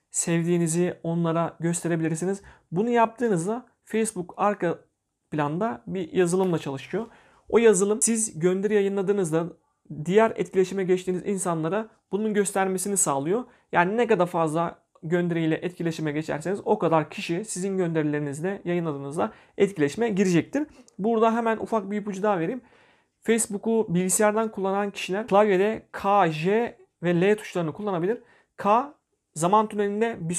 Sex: male